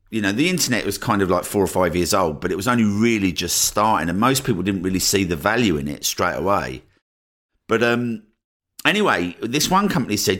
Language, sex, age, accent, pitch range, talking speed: English, male, 50-69, British, 85-115 Hz, 225 wpm